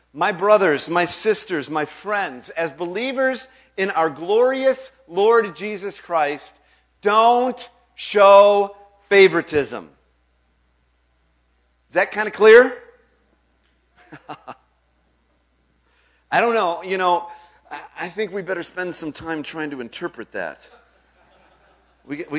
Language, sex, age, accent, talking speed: English, male, 50-69, American, 105 wpm